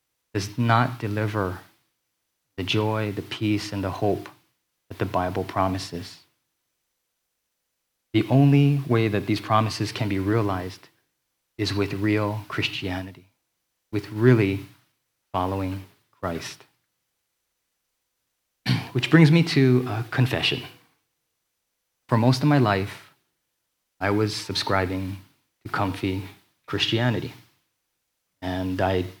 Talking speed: 105 wpm